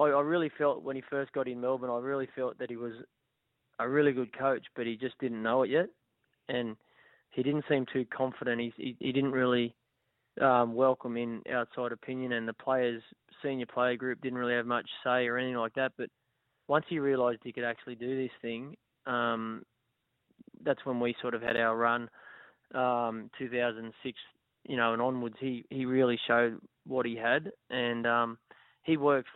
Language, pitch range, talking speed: English, 120-130 Hz, 190 wpm